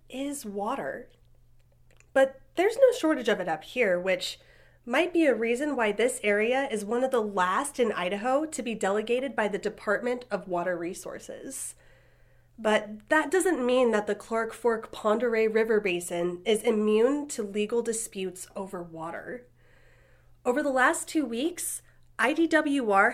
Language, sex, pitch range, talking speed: English, female, 205-290 Hz, 150 wpm